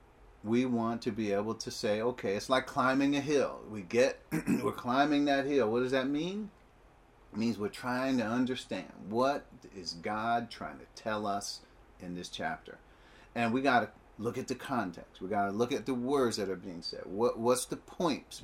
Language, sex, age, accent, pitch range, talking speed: English, male, 40-59, American, 110-145 Hz, 200 wpm